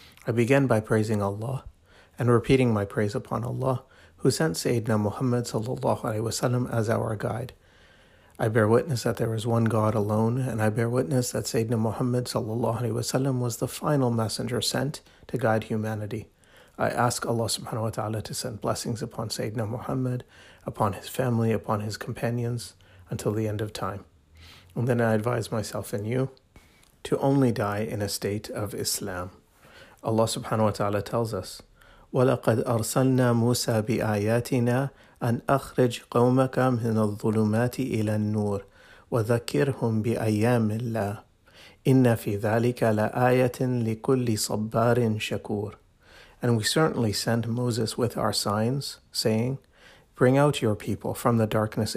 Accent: American